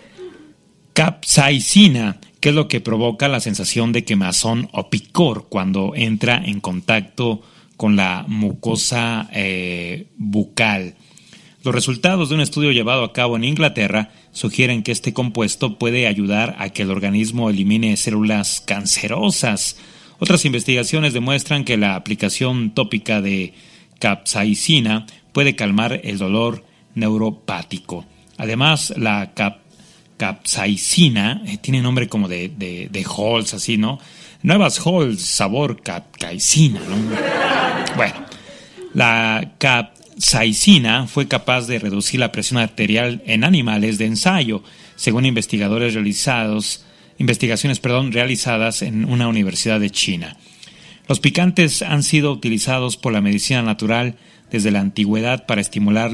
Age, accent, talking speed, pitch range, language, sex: 40-59, Mexican, 120 wpm, 105-135 Hz, Spanish, male